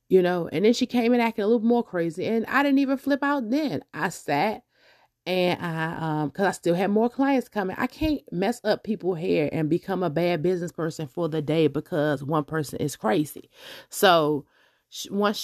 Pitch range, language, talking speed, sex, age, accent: 165-225 Hz, English, 205 wpm, female, 30-49, American